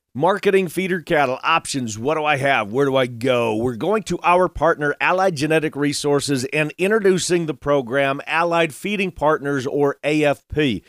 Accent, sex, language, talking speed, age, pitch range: American, male, English, 160 wpm, 40-59, 135-170 Hz